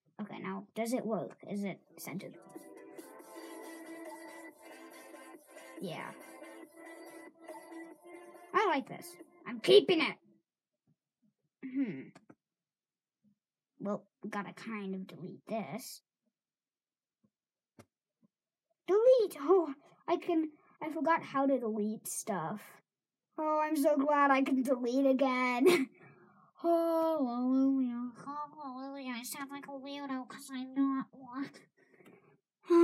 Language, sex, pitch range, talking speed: English, male, 210-330 Hz, 95 wpm